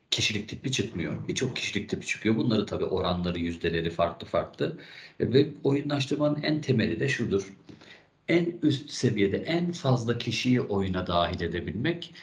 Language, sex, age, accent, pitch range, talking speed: Turkish, male, 50-69, native, 95-130 Hz, 135 wpm